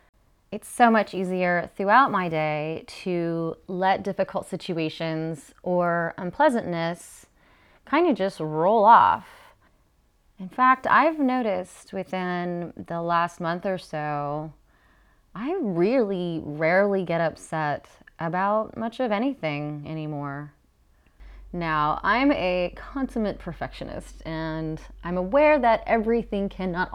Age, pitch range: 30-49, 150-195 Hz